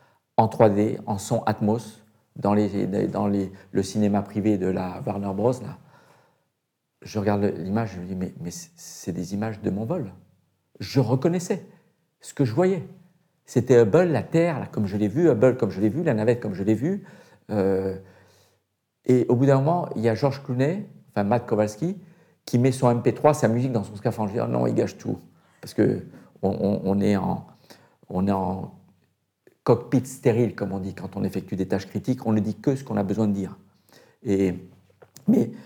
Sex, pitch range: male, 105-130 Hz